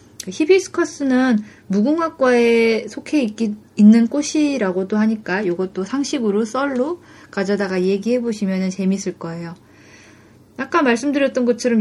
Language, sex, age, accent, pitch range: Korean, female, 20-39, native, 195-270 Hz